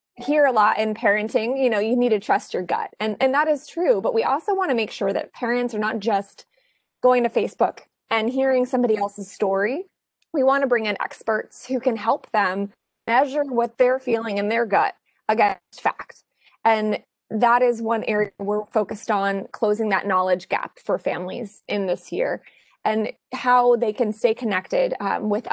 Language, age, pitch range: English, 20-39, 200-245 Hz